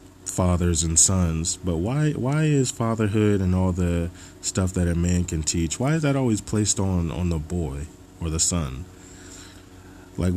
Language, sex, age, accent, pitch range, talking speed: English, male, 20-39, American, 85-95 Hz, 175 wpm